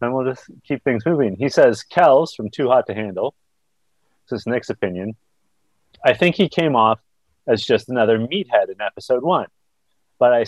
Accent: American